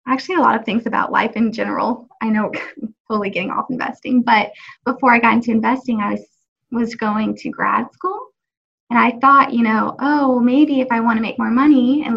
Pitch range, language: 220-260 Hz, English